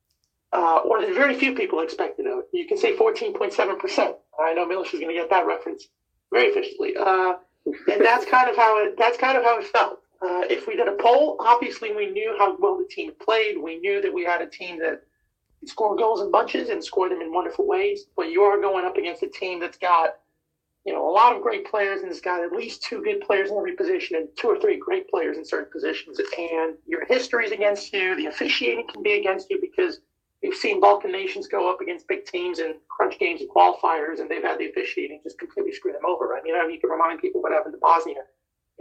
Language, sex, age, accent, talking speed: English, male, 30-49, American, 240 wpm